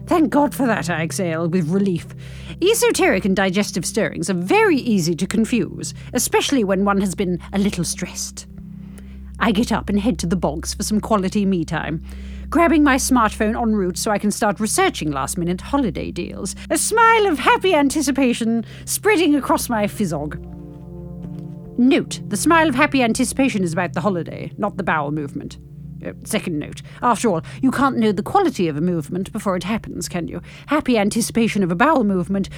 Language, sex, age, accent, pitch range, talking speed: English, female, 40-59, British, 175-270 Hz, 180 wpm